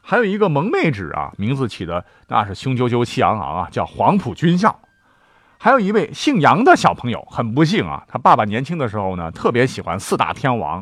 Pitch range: 90-130 Hz